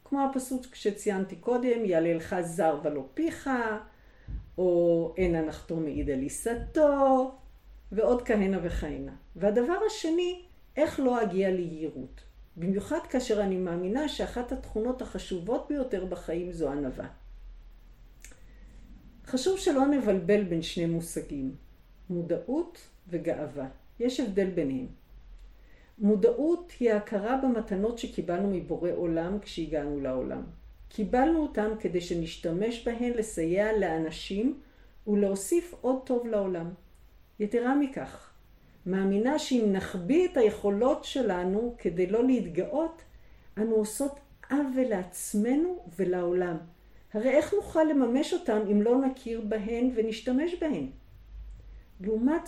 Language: Hebrew